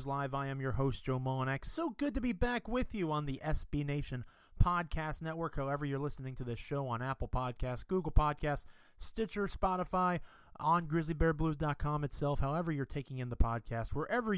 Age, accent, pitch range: 30-49, American, 120-155 Hz